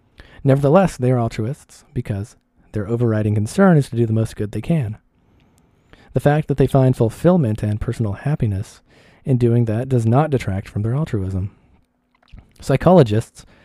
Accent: American